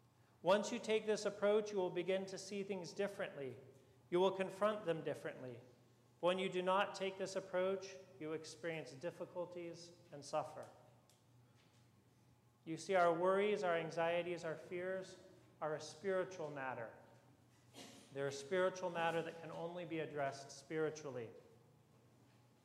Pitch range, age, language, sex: 130-175 Hz, 40-59, English, male